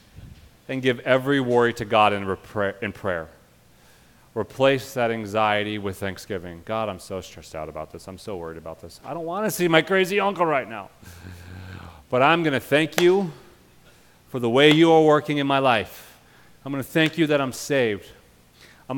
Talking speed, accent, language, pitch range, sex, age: 190 wpm, American, English, 95-130 Hz, male, 30-49